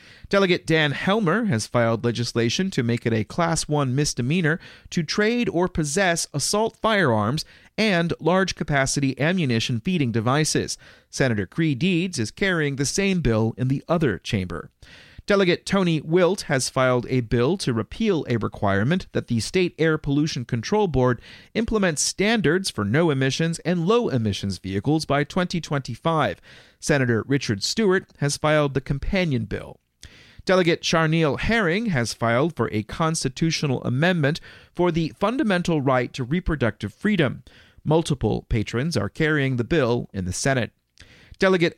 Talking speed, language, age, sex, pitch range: 140 wpm, English, 40-59, male, 125-175 Hz